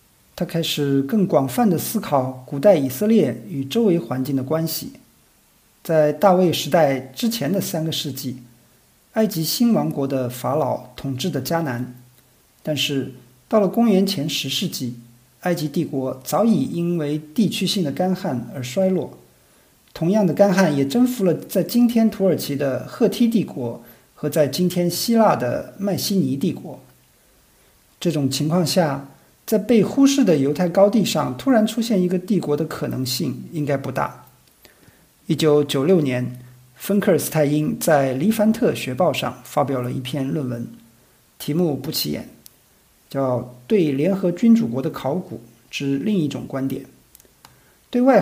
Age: 50-69